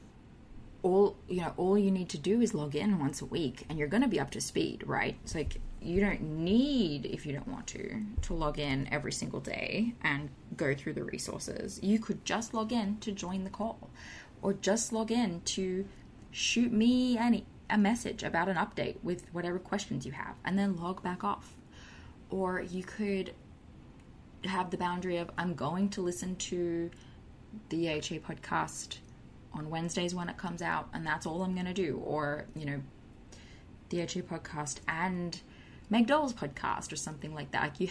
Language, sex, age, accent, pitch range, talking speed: English, female, 20-39, Australian, 160-205 Hz, 190 wpm